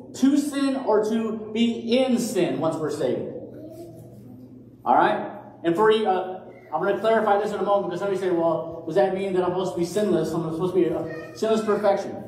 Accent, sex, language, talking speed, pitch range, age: American, male, English, 210 wpm, 165-225 Hz, 40-59